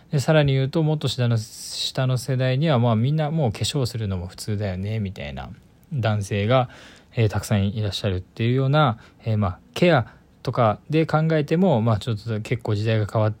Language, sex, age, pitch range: Japanese, male, 20-39, 100-130 Hz